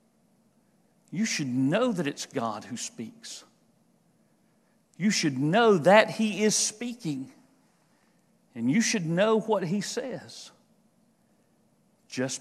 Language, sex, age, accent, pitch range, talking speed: English, male, 50-69, American, 155-220 Hz, 110 wpm